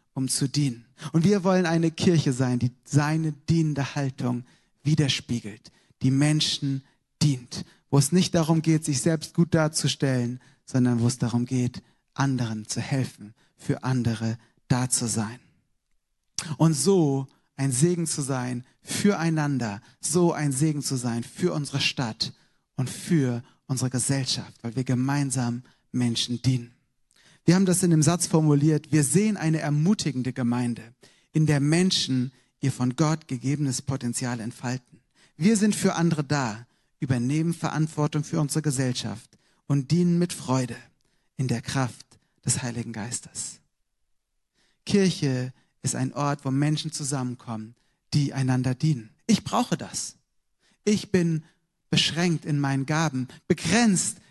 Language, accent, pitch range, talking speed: German, German, 125-160 Hz, 135 wpm